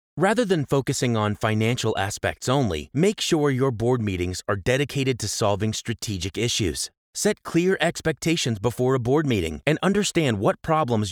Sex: male